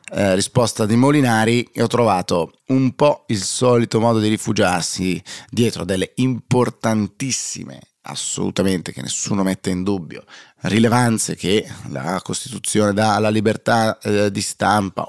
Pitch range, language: 95-120 Hz, Italian